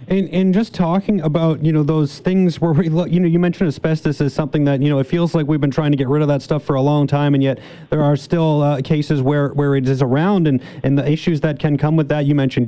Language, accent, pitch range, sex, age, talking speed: English, American, 145-170 Hz, male, 30-49, 290 wpm